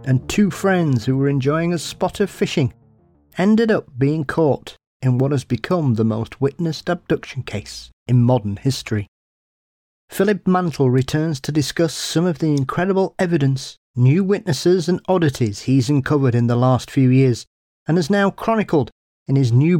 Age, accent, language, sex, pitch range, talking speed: 40-59, British, English, male, 115-155 Hz, 165 wpm